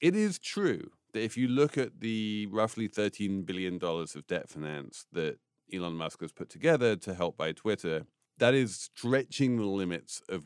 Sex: male